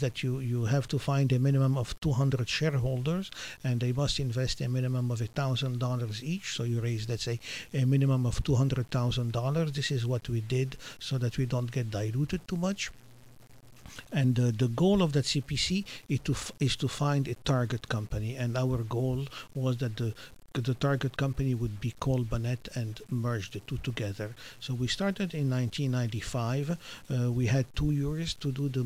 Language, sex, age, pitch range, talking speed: English, male, 50-69, 120-140 Hz, 180 wpm